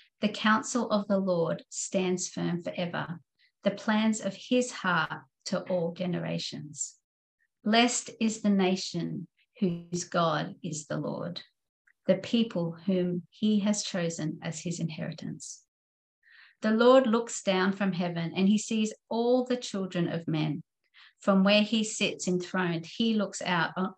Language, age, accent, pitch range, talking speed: English, 50-69, Australian, 165-205 Hz, 145 wpm